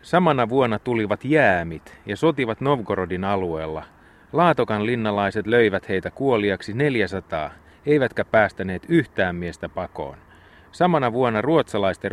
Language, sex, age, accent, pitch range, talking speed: Finnish, male, 30-49, native, 95-125 Hz, 110 wpm